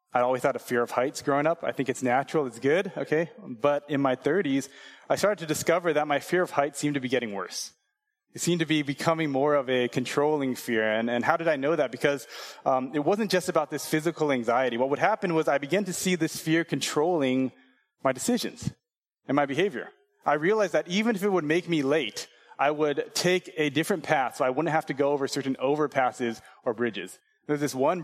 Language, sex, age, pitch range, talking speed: English, male, 20-39, 125-160 Hz, 225 wpm